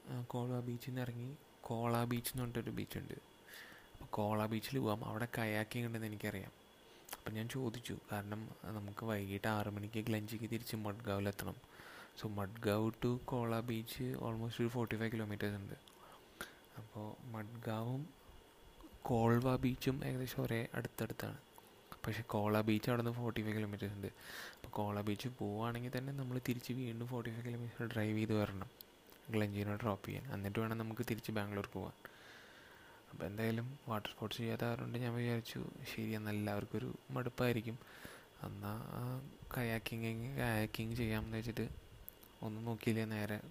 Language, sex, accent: Malayalam, male, native